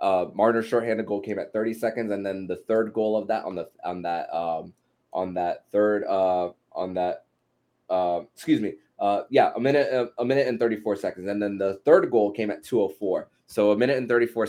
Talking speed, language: 230 wpm, English